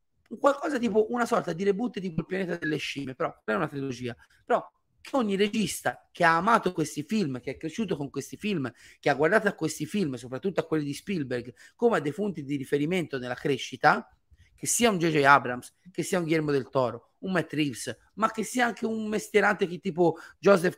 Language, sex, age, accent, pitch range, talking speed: Italian, male, 30-49, native, 140-205 Hz, 200 wpm